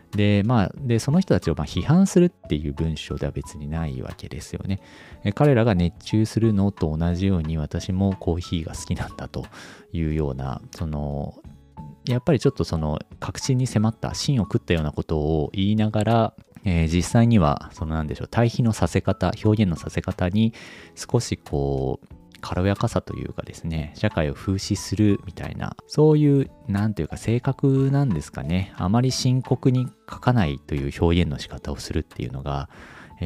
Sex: male